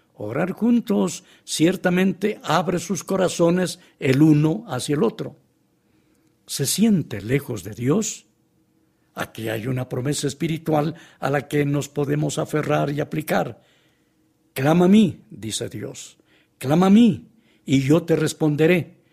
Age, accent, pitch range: 60-79, Mexican, 140-170 Hz